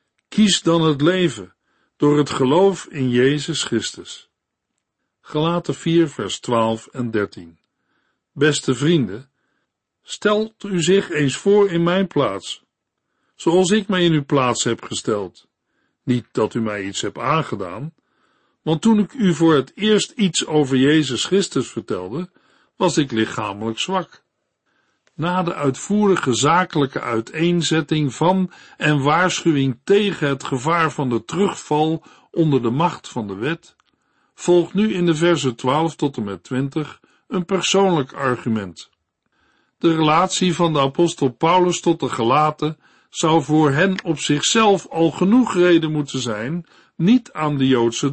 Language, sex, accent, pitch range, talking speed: Dutch, male, Dutch, 135-180 Hz, 140 wpm